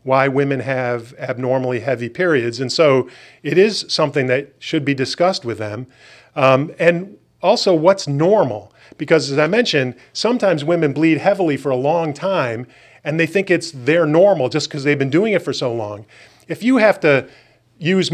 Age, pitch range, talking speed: 40-59, 135-170 Hz, 180 wpm